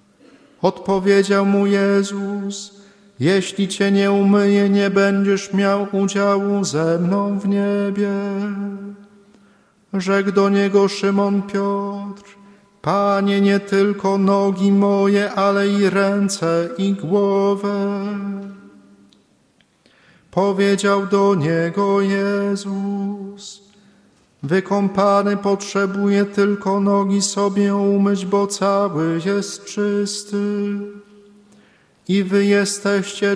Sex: male